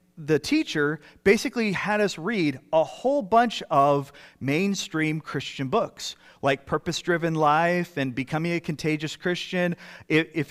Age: 30-49